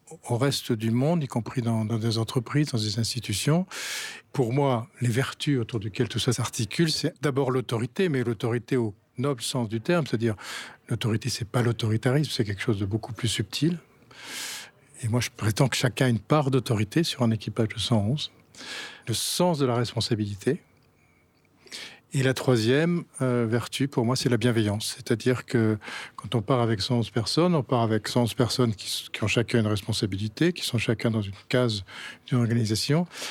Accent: French